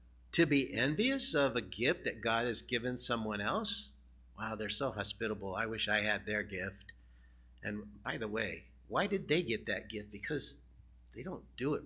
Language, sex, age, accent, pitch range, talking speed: English, male, 50-69, American, 95-140 Hz, 185 wpm